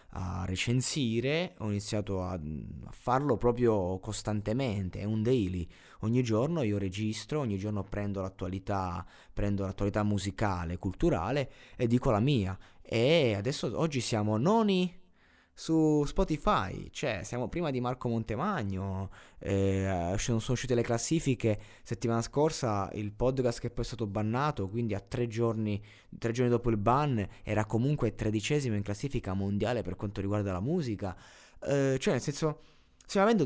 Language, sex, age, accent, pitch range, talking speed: Italian, male, 20-39, native, 100-130 Hz, 140 wpm